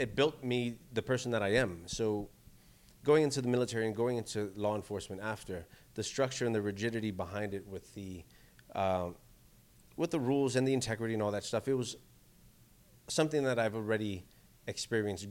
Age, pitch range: 30-49, 100-120 Hz